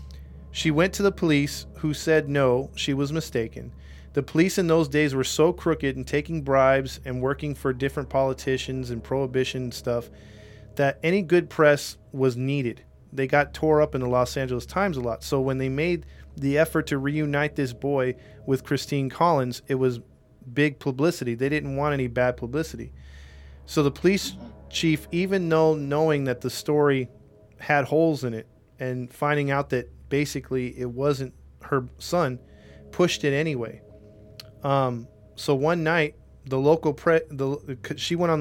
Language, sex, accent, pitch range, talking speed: English, male, American, 120-150 Hz, 165 wpm